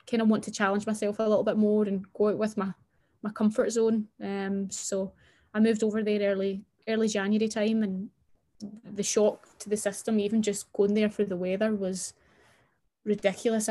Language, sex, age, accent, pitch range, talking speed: English, female, 20-39, British, 200-220 Hz, 190 wpm